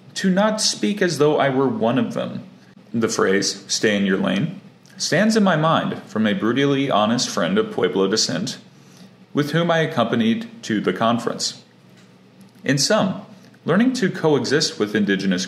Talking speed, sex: 165 wpm, male